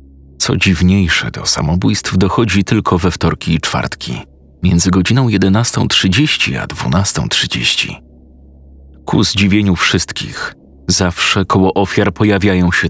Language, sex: Polish, male